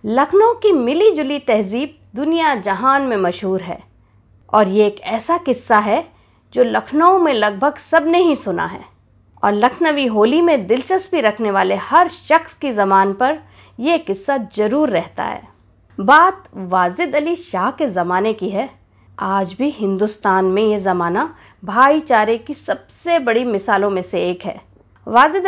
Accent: native